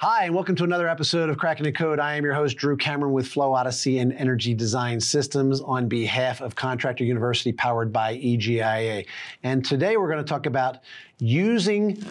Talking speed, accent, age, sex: 190 wpm, American, 40-59, male